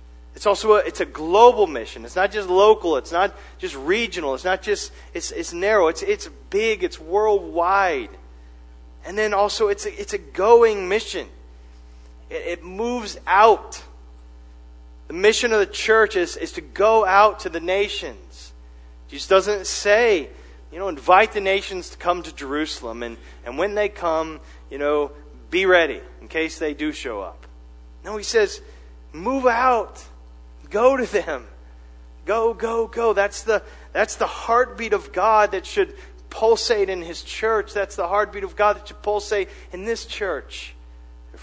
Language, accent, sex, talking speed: English, American, male, 165 wpm